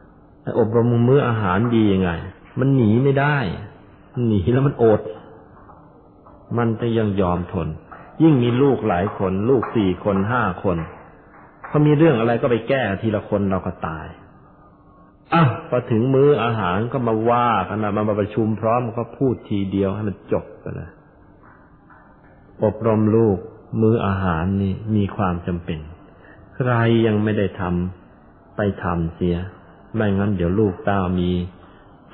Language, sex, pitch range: Thai, male, 95-115 Hz